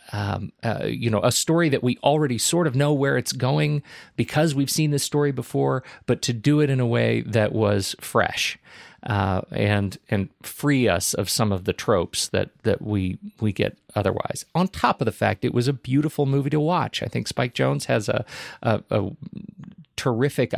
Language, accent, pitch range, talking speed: English, American, 105-135 Hz, 200 wpm